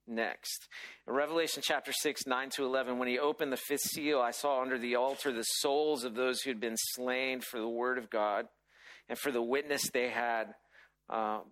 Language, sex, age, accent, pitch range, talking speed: English, male, 40-59, American, 125-150 Hz, 205 wpm